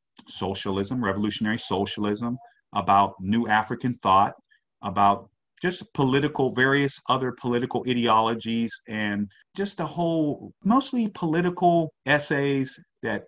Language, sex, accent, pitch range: English, male, American, 100-130 Hz